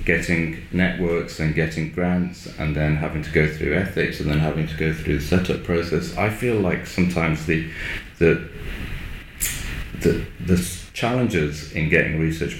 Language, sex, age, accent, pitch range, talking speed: English, male, 30-49, British, 80-90 Hz, 160 wpm